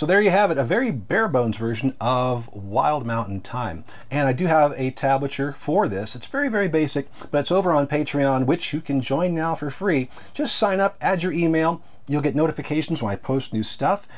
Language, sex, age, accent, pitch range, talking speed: English, male, 40-59, American, 120-160 Hz, 215 wpm